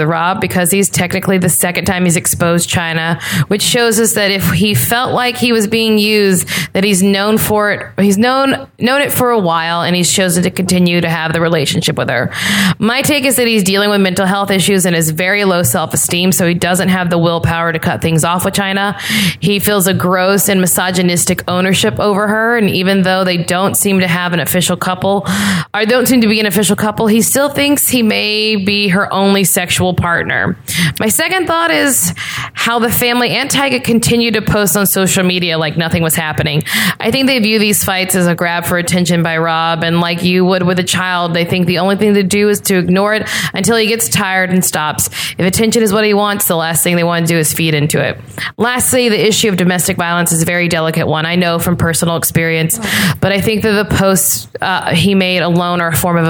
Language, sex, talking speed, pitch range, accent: English, female, 230 wpm, 170-210 Hz, American